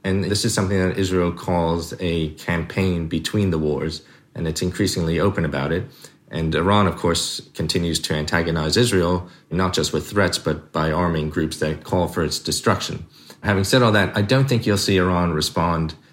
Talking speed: 185 wpm